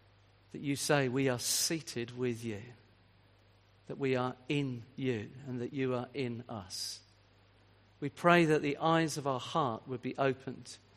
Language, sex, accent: English, male, British